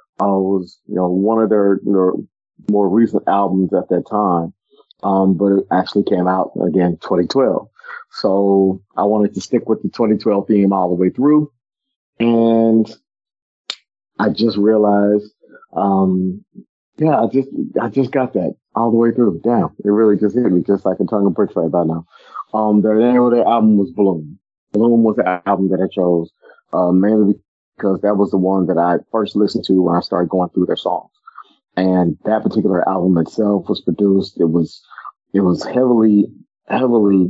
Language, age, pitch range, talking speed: English, 40-59, 95-110 Hz, 180 wpm